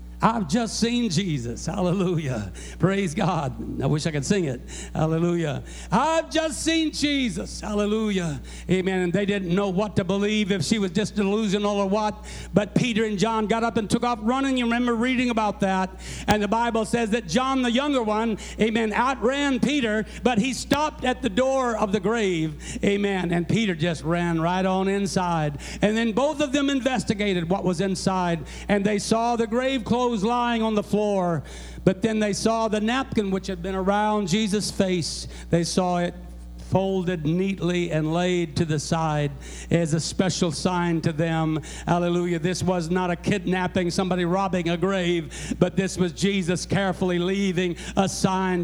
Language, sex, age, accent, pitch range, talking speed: English, male, 60-79, American, 170-225 Hz, 175 wpm